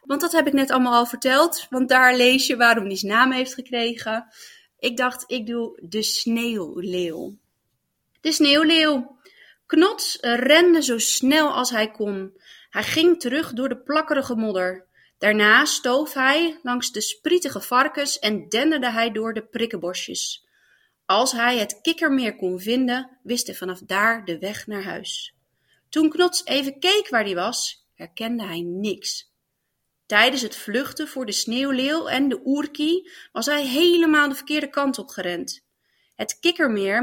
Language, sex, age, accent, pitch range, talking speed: Dutch, female, 30-49, Dutch, 215-290 Hz, 155 wpm